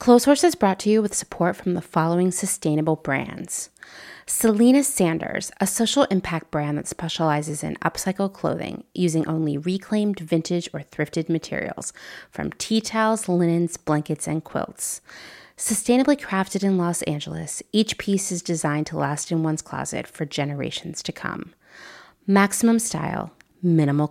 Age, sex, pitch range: 30-49, female, 160-195 Hz